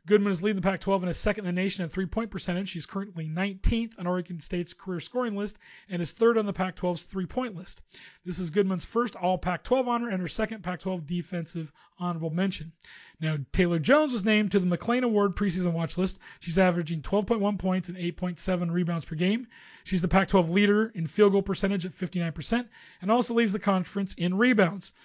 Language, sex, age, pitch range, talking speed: English, male, 30-49, 175-205 Hz, 195 wpm